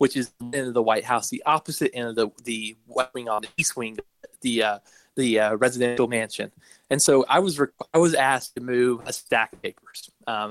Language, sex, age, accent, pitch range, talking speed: English, male, 20-39, American, 115-130 Hz, 235 wpm